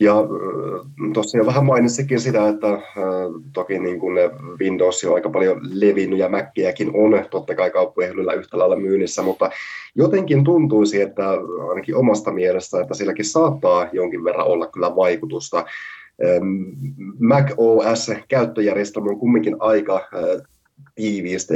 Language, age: Finnish, 20-39